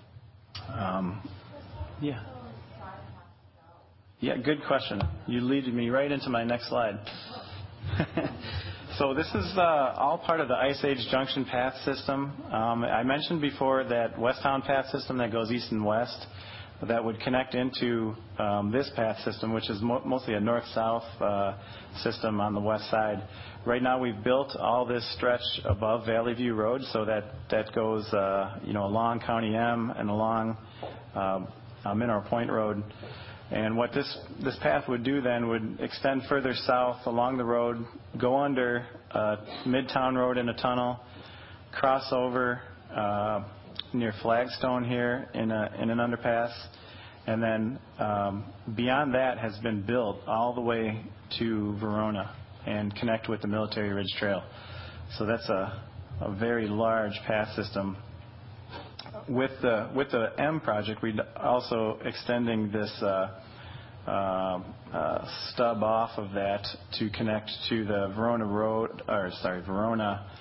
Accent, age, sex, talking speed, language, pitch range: American, 40-59, male, 145 wpm, English, 105-120 Hz